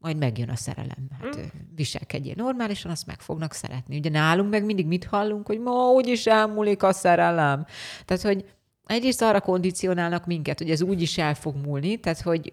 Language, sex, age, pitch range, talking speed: Hungarian, female, 30-49, 145-200 Hz, 175 wpm